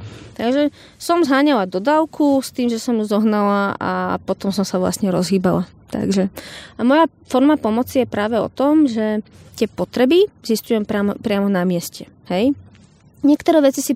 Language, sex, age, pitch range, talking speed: Slovak, female, 20-39, 195-260 Hz, 160 wpm